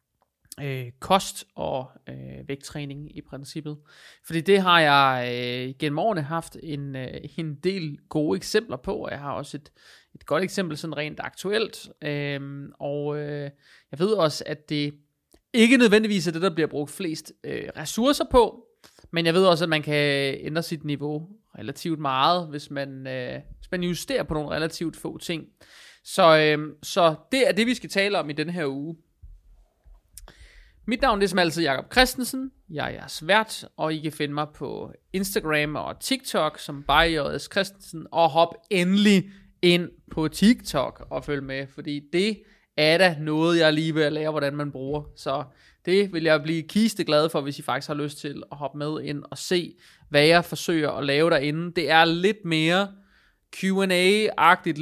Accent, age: native, 30-49